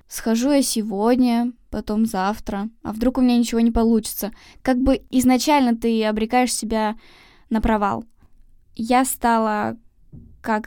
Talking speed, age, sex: 130 wpm, 10-29, female